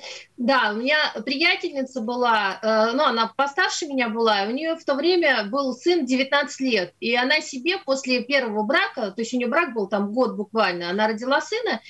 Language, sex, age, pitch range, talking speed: Russian, female, 30-49, 235-300 Hz, 190 wpm